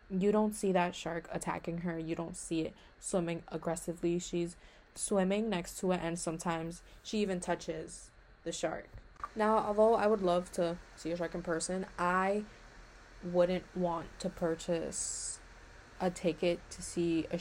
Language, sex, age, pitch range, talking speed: English, female, 20-39, 170-185 Hz, 160 wpm